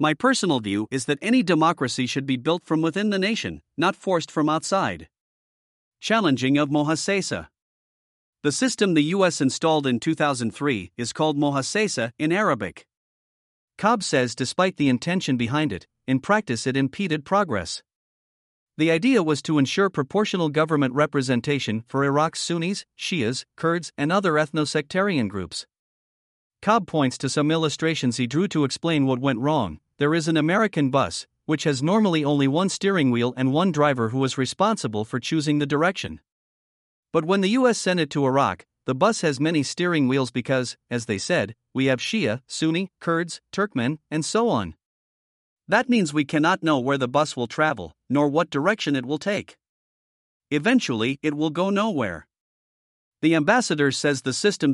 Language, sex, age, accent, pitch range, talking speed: English, male, 50-69, American, 130-170 Hz, 165 wpm